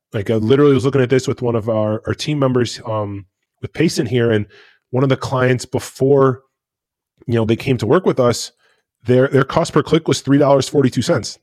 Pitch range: 120-145 Hz